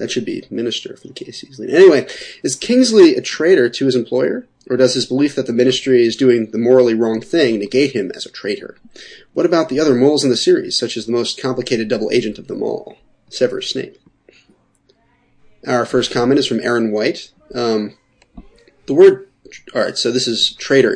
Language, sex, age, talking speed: English, male, 30-49, 195 wpm